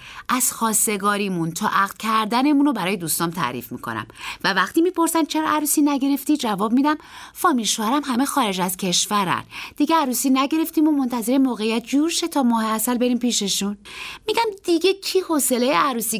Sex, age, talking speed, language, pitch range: female, 30-49, 150 wpm, Persian, 200-295 Hz